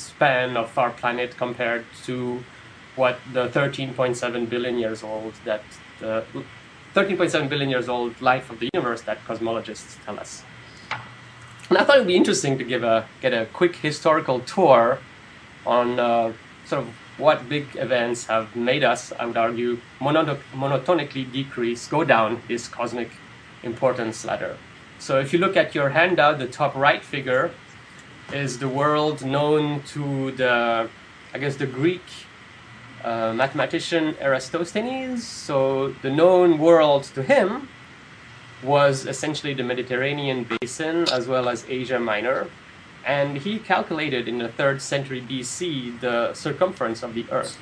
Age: 30-49